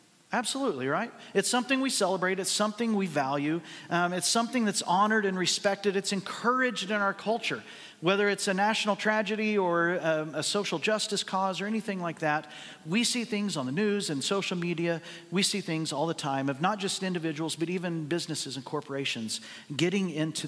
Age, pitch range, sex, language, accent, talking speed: 40-59, 150-205 Hz, male, English, American, 185 wpm